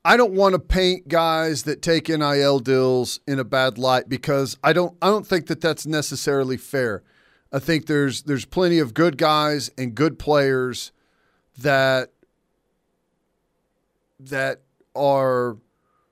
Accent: American